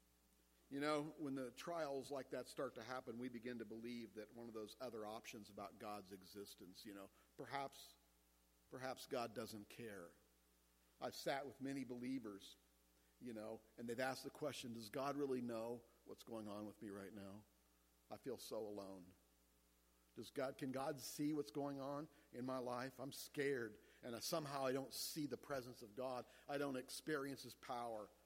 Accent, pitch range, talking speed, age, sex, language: American, 105-140 Hz, 180 wpm, 50-69, male, English